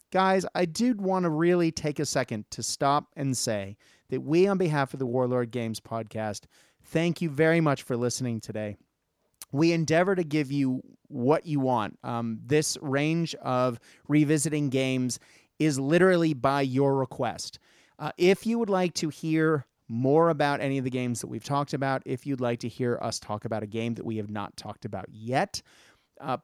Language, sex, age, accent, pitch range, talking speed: English, male, 30-49, American, 125-160 Hz, 190 wpm